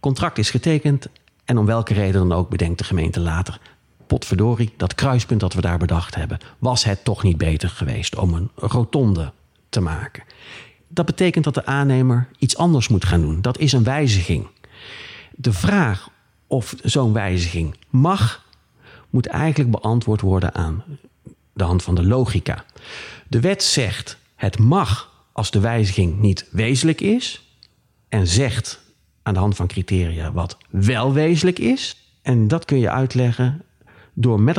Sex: male